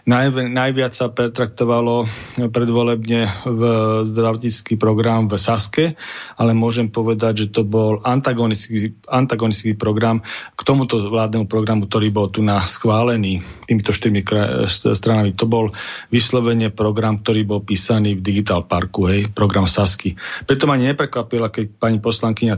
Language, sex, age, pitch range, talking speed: Slovak, male, 40-59, 110-125 Hz, 130 wpm